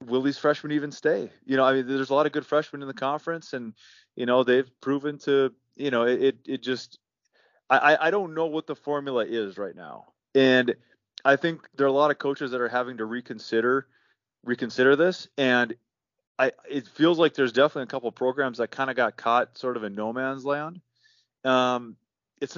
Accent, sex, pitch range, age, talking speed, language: American, male, 115-140 Hz, 30-49, 210 wpm, English